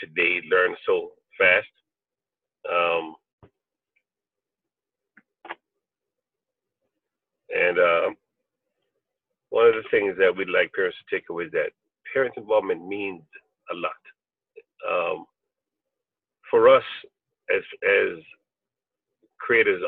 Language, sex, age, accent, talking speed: English, male, 50-69, American, 95 wpm